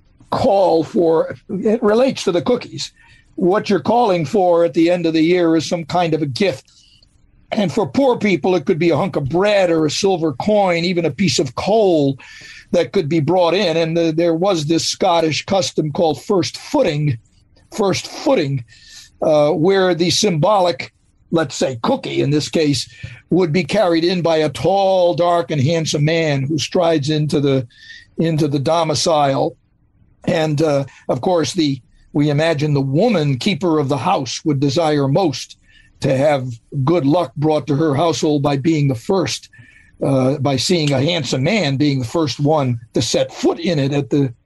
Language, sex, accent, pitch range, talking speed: English, male, American, 145-185 Hz, 180 wpm